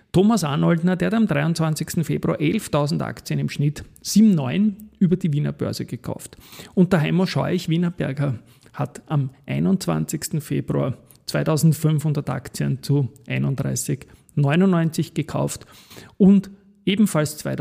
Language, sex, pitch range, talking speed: German, male, 140-185 Hz, 115 wpm